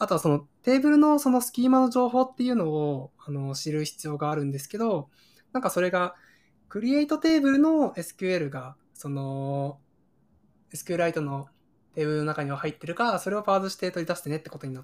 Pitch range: 145-205 Hz